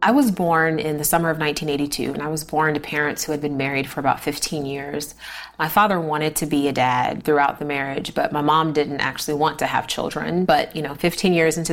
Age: 30-49